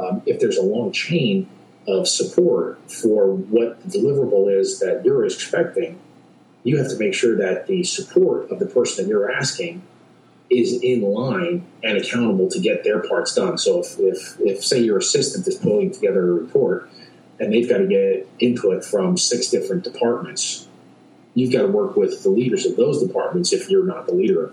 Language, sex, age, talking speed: English, male, 40-59, 190 wpm